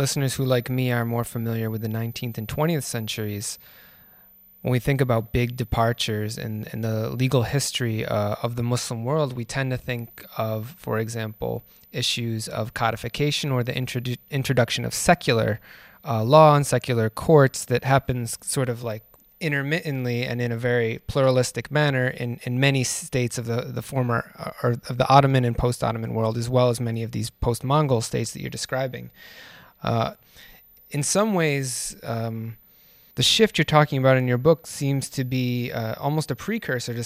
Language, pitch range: English, 120-140 Hz